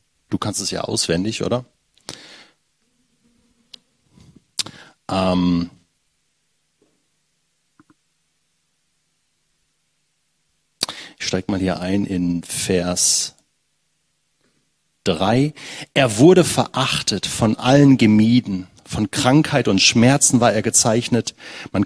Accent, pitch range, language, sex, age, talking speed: German, 105-135 Hz, German, male, 40-59, 80 wpm